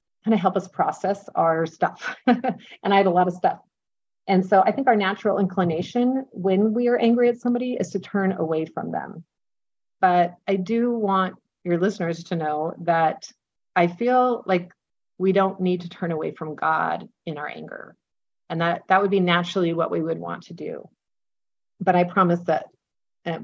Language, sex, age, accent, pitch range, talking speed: English, female, 40-59, American, 175-230 Hz, 185 wpm